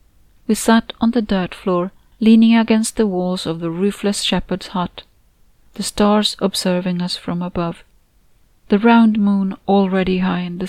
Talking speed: 155 wpm